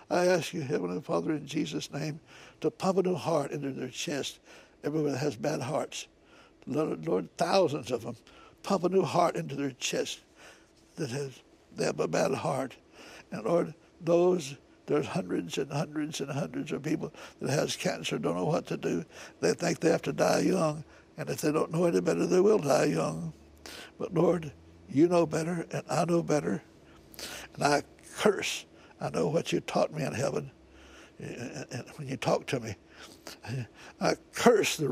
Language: English